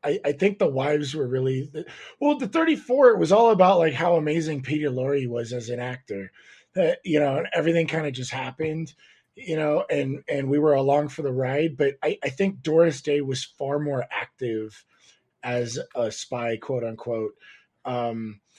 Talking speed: 185 wpm